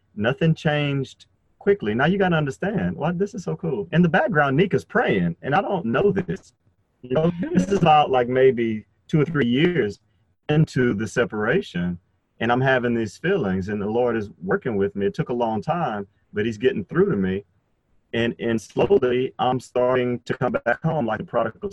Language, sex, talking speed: English, male, 200 wpm